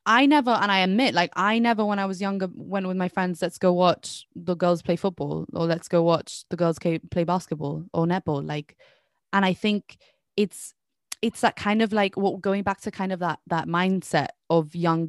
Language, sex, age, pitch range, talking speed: English, female, 20-39, 175-210 Hz, 215 wpm